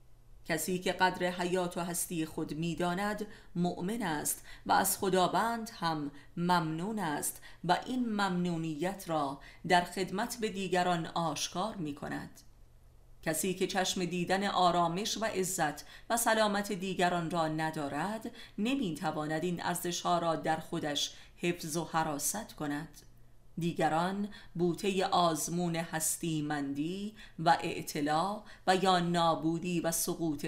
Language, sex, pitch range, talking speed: Persian, female, 155-190 Hz, 120 wpm